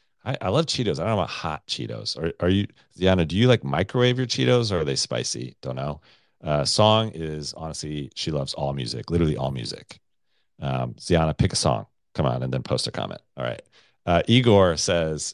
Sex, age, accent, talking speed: male, 40-59, American, 210 wpm